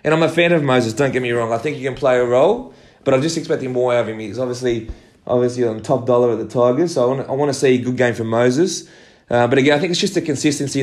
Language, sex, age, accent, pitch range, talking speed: English, male, 20-39, Australian, 120-140 Hz, 300 wpm